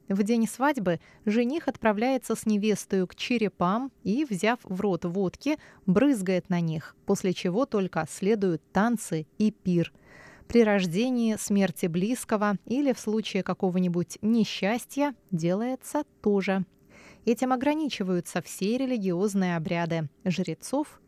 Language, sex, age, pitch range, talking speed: Russian, female, 20-39, 180-235 Hz, 115 wpm